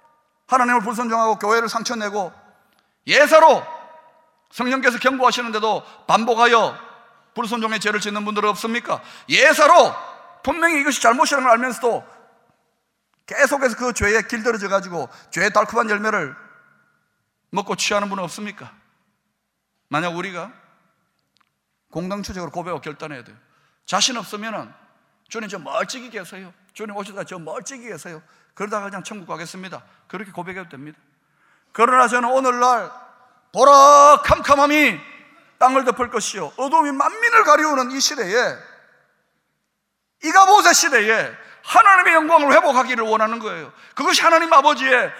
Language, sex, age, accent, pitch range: Korean, male, 30-49, native, 205-290 Hz